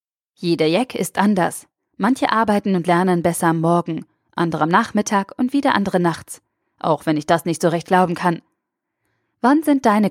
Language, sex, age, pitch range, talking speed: German, female, 30-49, 170-225 Hz, 180 wpm